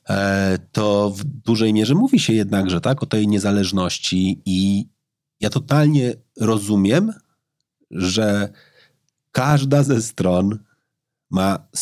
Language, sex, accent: Polish, male, native